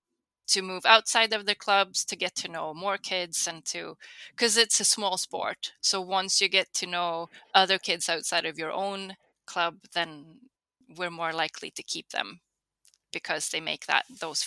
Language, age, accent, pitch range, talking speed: English, 20-39, Swedish, 170-195 Hz, 185 wpm